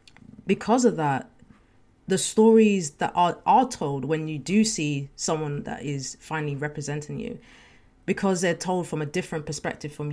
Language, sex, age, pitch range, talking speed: English, female, 30-49, 145-180 Hz, 160 wpm